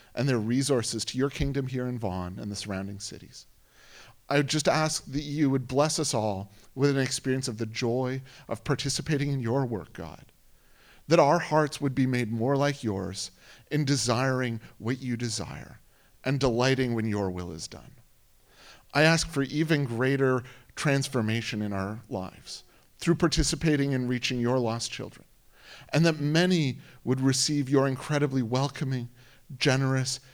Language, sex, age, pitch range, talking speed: English, male, 40-59, 120-145 Hz, 160 wpm